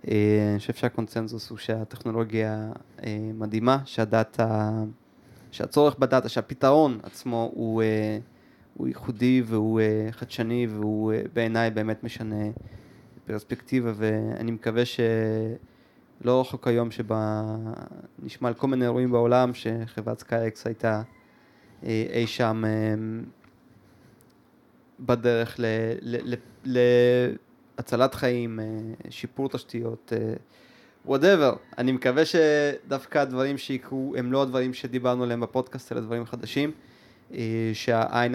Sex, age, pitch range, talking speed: male, 20-39, 110-125 Hz, 110 wpm